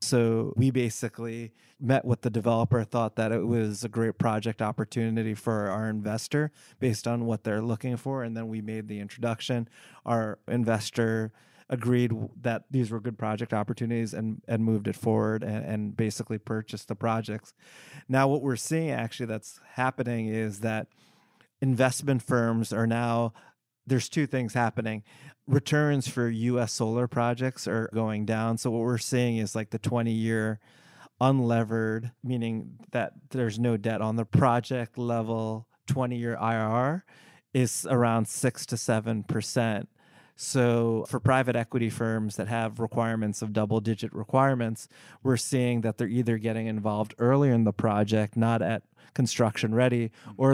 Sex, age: male, 30-49